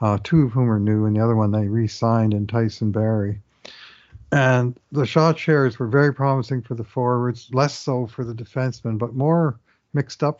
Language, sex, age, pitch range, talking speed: English, male, 50-69, 115-135 Hz, 195 wpm